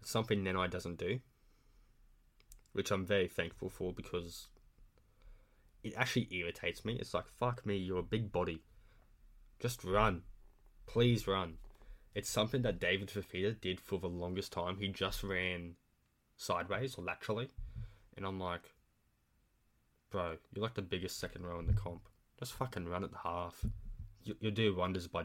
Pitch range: 90-110 Hz